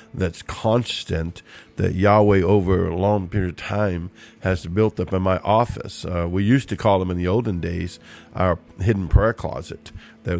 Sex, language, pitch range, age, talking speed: male, English, 90-105 Hz, 50-69, 180 wpm